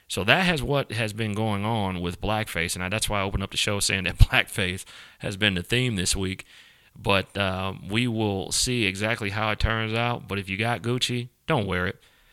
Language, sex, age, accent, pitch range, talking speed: English, male, 30-49, American, 95-110 Hz, 220 wpm